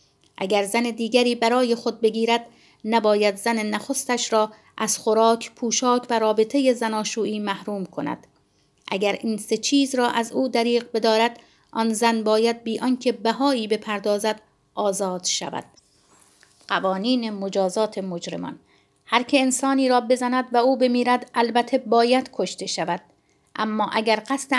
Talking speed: 130 wpm